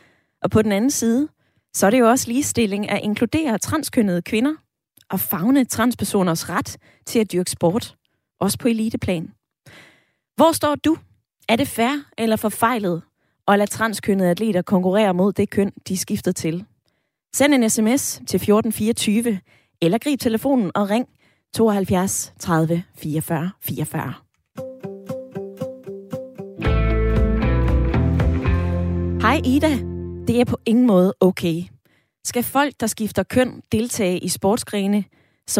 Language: Danish